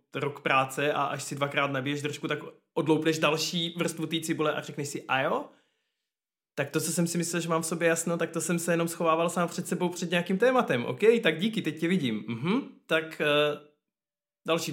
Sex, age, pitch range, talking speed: male, 20-39, 140-170 Hz, 210 wpm